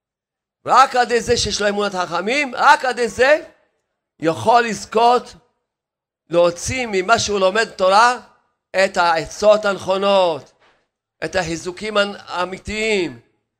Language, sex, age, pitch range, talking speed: Hebrew, male, 50-69, 190-225 Hz, 100 wpm